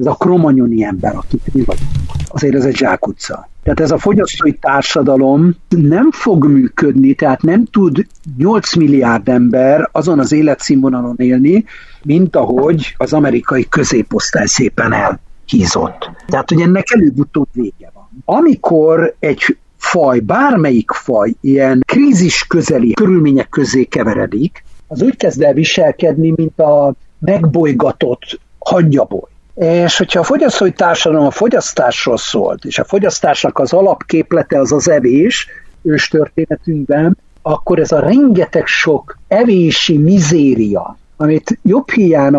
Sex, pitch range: male, 140-190 Hz